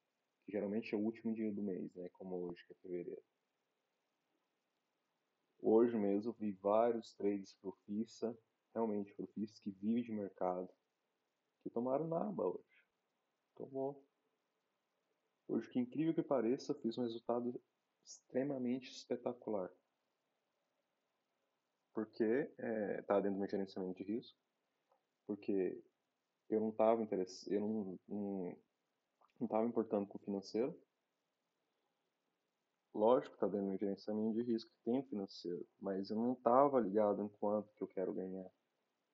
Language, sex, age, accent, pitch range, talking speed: Portuguese, male, 20-39, Brazilian, 100-115 Hz, 135 wpm